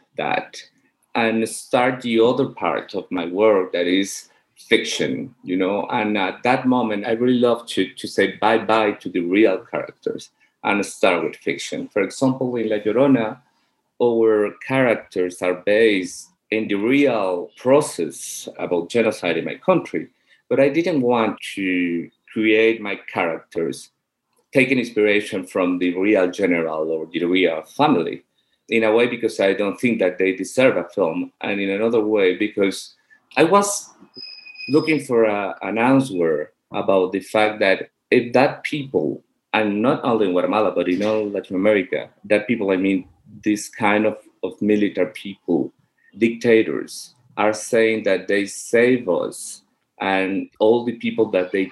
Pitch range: 95-120 Hz